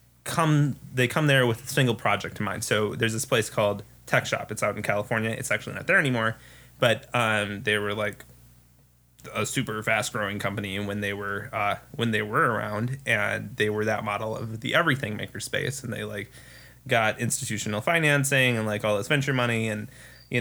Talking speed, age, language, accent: 205 wpm, 20-39, English, American